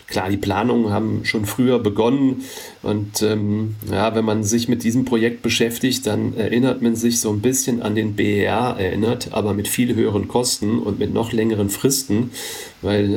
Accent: German